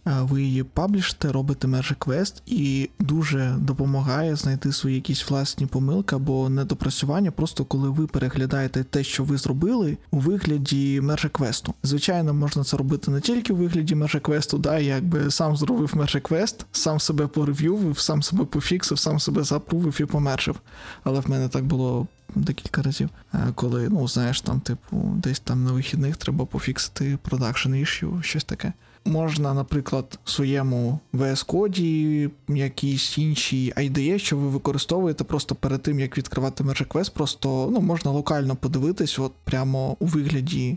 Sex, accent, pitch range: male, native, 135-155 Hz